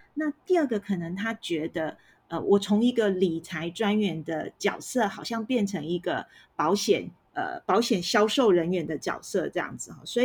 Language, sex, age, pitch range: Chinese, female, 30-49, 185-235 Hz